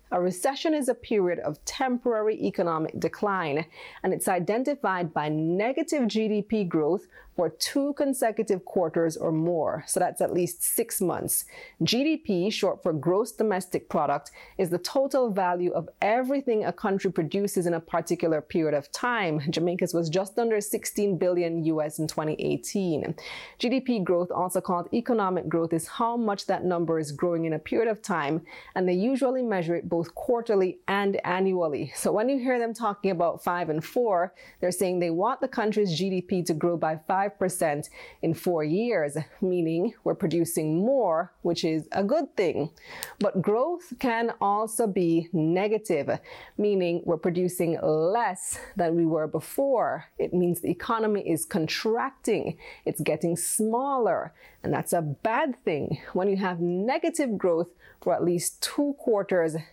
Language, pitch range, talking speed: English, 170-225 Hz, 160 wpm